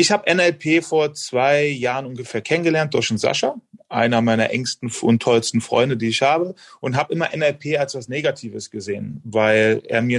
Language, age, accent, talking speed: German, 30-49, German, 185 wpm